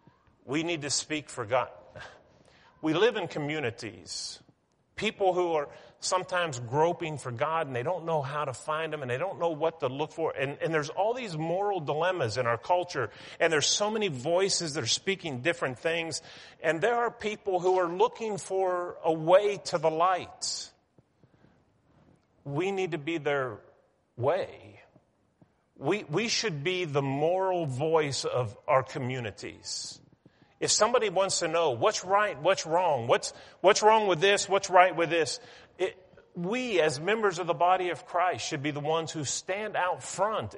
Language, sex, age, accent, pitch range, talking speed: English, male, 40-59, American, 150-190 Hz, 175 wpm